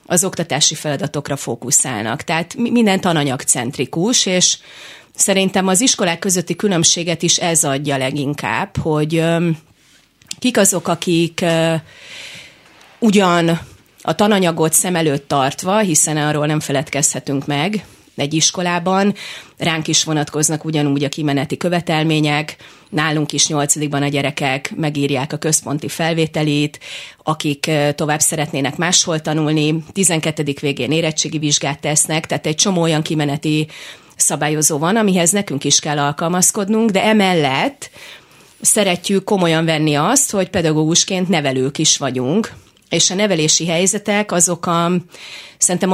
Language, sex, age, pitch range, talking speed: Hungarian, female, 30-49, 150-185 Hz, 120 wpm